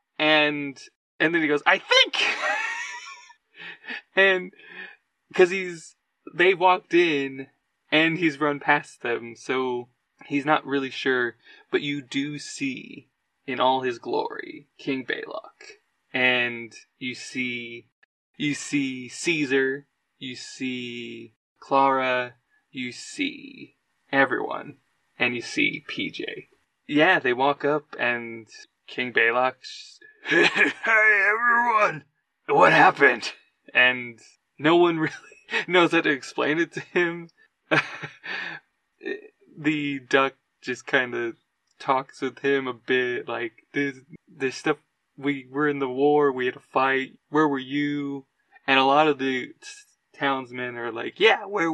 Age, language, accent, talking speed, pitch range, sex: 20-39, English, American, 125 wpm, 125-175 Hz, male